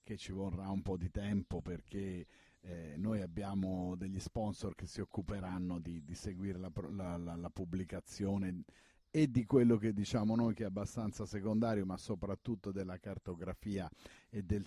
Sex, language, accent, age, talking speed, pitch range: male, Italian, native, 50-69, 160 wpm, 90-115 Hz